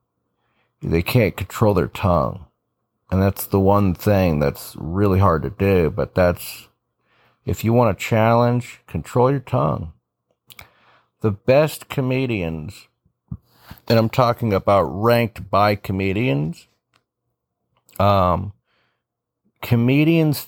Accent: American